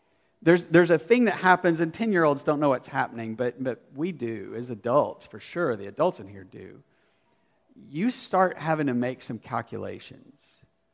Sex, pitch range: male, 150-235 Hz